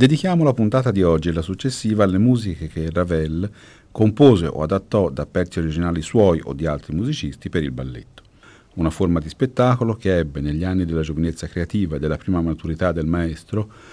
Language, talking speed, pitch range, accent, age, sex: Italian, 185 wpm, 85-115 Hz, native, 40-59, male